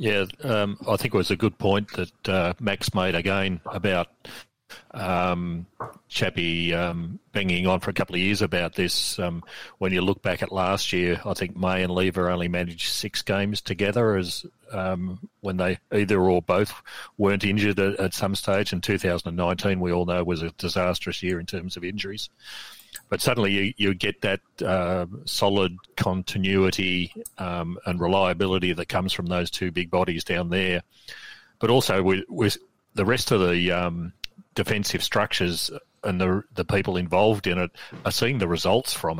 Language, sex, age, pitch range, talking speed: English, male, 40-59, 90-100 Hz, 175 wpm